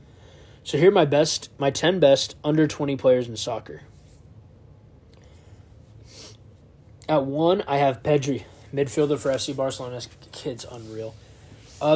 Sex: male